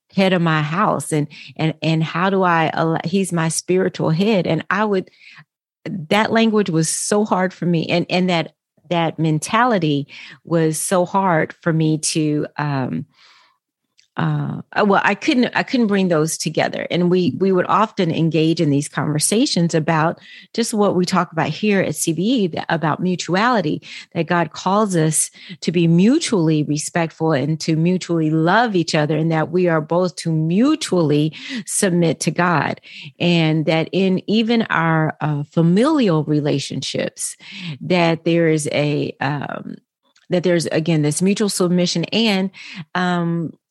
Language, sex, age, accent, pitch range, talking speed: English, female, 40-59, American, 160-205 Hz, 150 wpm